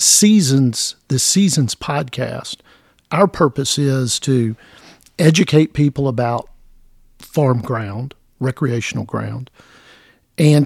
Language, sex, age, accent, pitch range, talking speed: English, male, 50-69, American, 130-165 Hz, 90 wpm